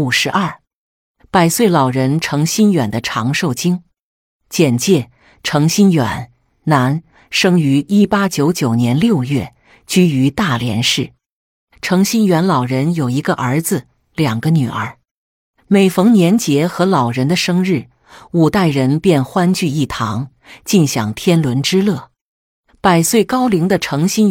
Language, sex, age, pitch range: Chinese, female, 50-69, 135-185 Hz